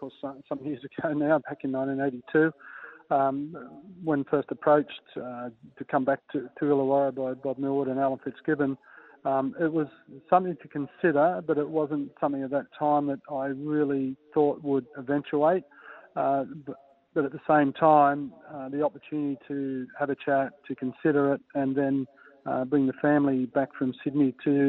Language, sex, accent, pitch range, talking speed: English, male, Australian, 135-150 Hz, 175 wpm